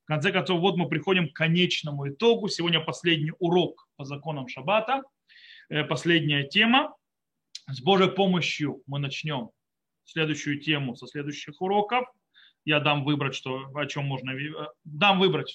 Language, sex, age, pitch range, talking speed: Russian, male, 30-49, 155-210 Hz, 140 wpm